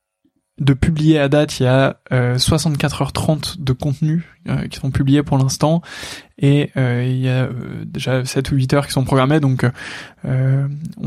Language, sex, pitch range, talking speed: French, male, 130-145 Hz, 180 wpm